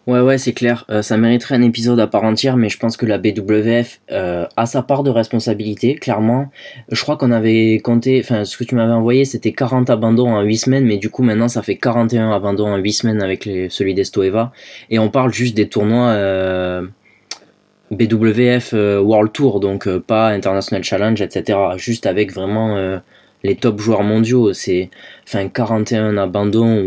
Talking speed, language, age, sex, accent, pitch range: 190 wpm, French, 20-39, male, French, 100-120 Hz